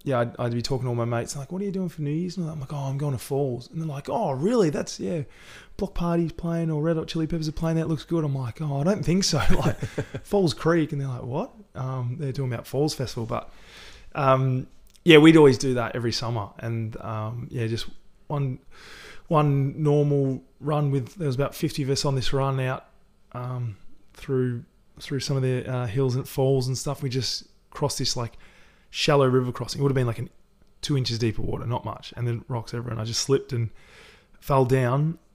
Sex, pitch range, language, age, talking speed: male, 120-145 Hz, English, 20-39, 230 wpm